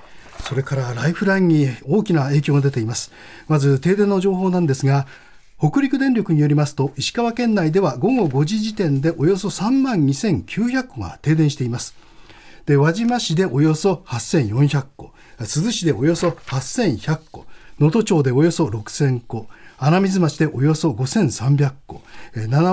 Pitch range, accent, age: 135-190 Hz, native, 40-59